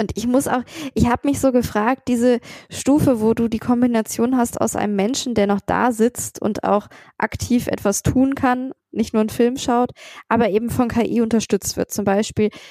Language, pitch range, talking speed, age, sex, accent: German, 205-245 Hz, 200 wpm, 10-29, female, German